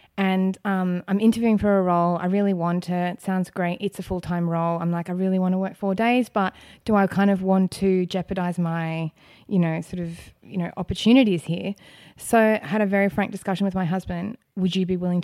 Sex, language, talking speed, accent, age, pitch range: female, English, 230 wpm, Australian, 20-39, 175-200 Hz